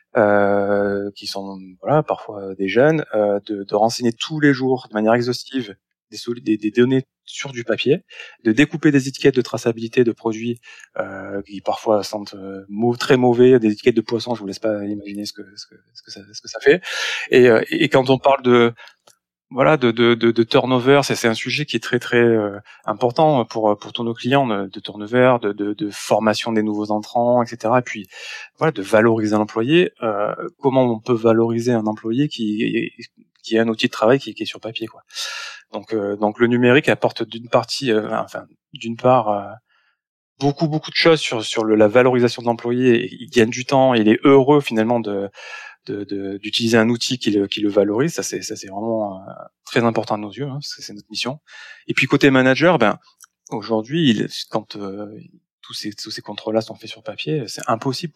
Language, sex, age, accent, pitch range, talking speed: French, male, 20-39, French, 105-125 Hz, 210 wpm